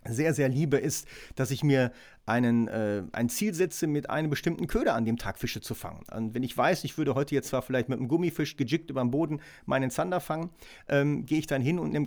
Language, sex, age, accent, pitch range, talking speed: German, male, 40-59, German, 125-150 Hz, 245 wpm